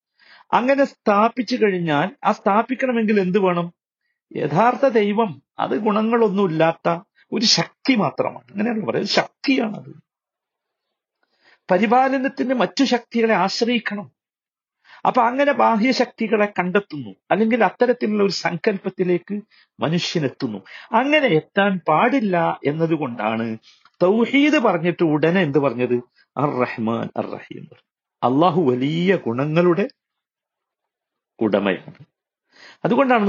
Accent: native